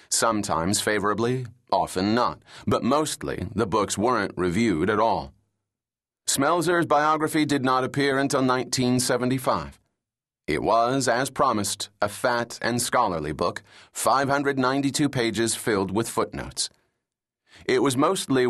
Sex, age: male, 30-49